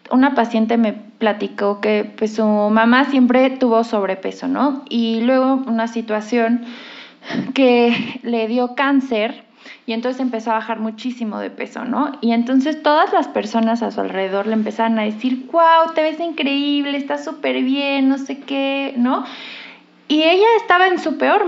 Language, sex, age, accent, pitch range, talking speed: Spanish, female, 20-39, Mexican, 220-265 Hz, 160 wpm